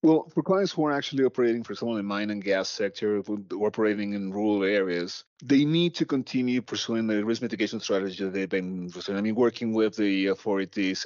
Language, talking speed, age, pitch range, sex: English, 205 wpm, 30-49, 100-120 Hz, male